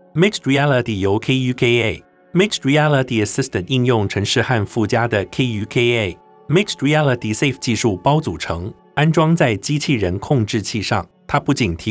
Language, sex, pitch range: Chinese, male, 110-150 Hz